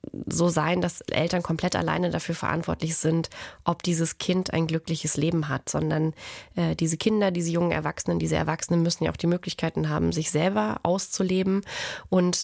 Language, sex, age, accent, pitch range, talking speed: German, female, 20-39, German, 165-185 Hz, 170 wpm